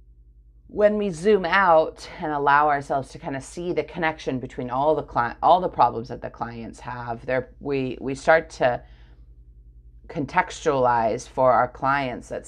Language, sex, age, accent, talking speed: English, female, 30-49, American, 165 wpm